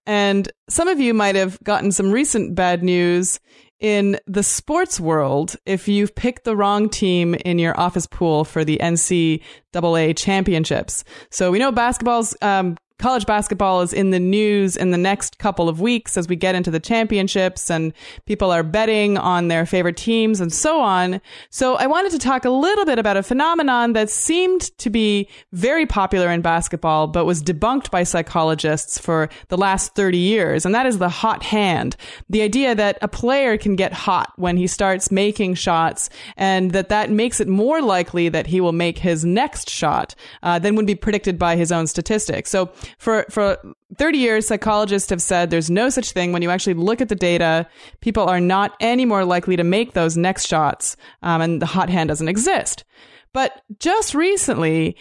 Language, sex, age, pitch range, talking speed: English, female, 20-39, 175-220 Hz, 190 wpm